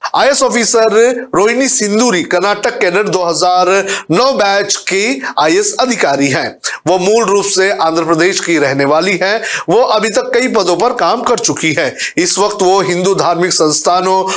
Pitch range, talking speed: 160-220 Hz, 165 wpm